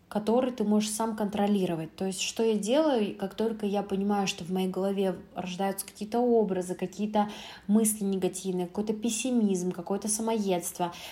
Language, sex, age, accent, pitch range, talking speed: Russian, female, 20-39, native, 185-215 Hz, 150 wpm